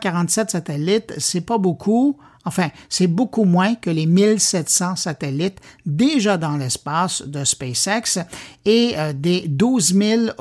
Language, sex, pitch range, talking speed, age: French, male, 155-220 Hz, 125 wpm, 50-69